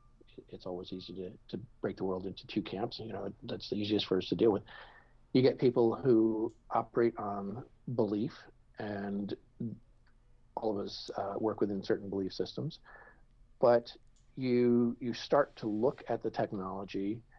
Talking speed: 160 wpm